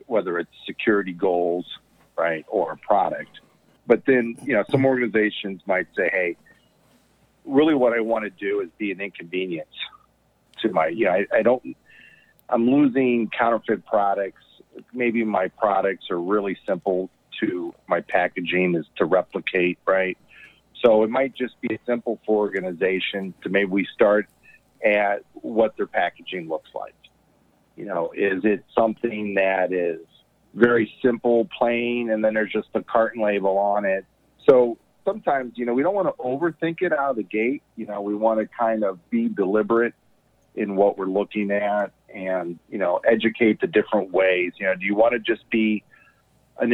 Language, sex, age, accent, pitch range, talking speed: English, male, 50-69, American, 100-120 Hz, 170 wpm